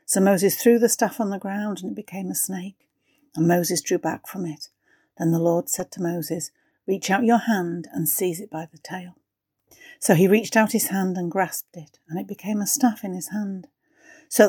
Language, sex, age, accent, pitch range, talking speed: English, female, 60-79, British, 180-215 Hz, 220 wpm